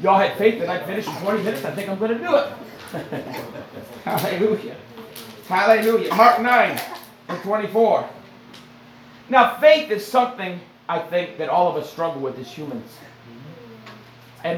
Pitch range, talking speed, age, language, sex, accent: 160-215 Hz, 150 wpm, 50-69, English, male, American